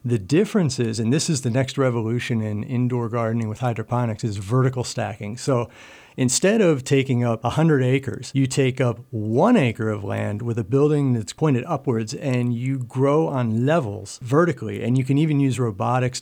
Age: 50-69